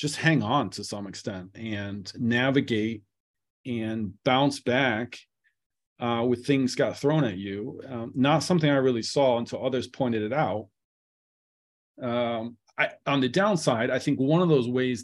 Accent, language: American, English